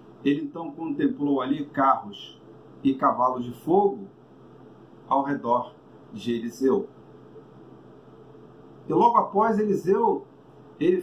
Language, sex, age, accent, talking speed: Portuguese, male, 50-69, Brazilian, 100 wpm